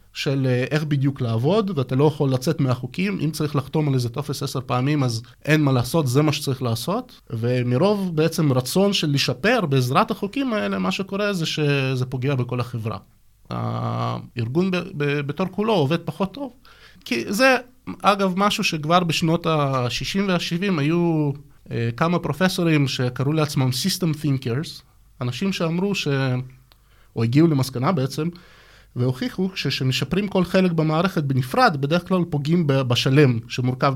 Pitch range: 130-180 Hz